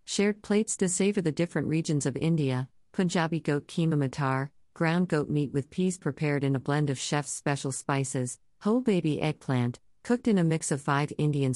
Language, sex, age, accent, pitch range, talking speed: English, female, 50-69, American, 130-160 Hz, 185 wpm